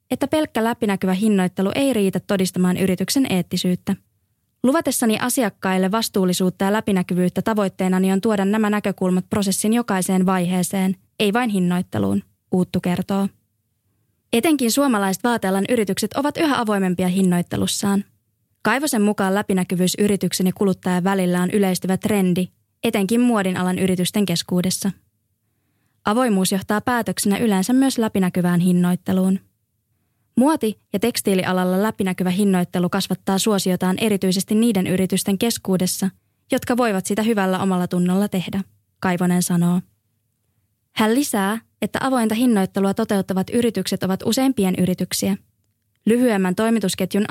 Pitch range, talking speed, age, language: 180-215 Hz, 110 wpm, 20-39, English